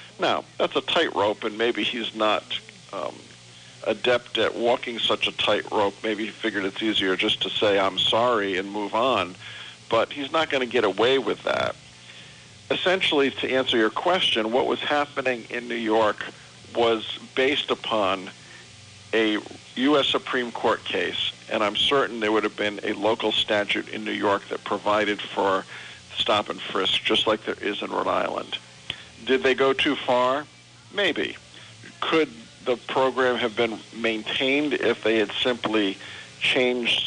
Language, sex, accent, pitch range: English, male, American, 105-120 Hz